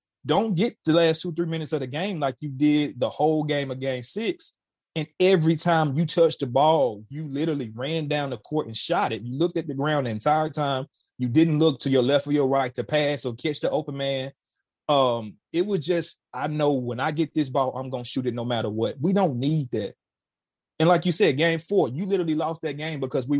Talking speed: 245 wpm